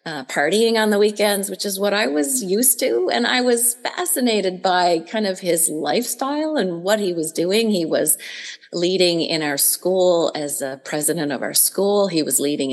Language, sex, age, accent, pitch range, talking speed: English, female, 30-49, American, 160-210 Hz, 195 wpm